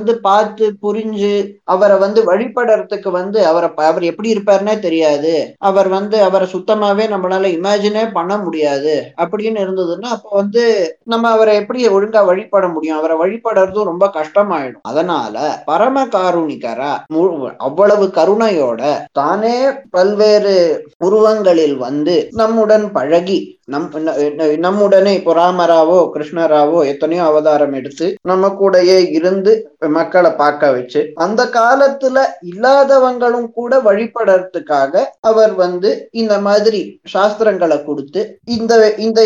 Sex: male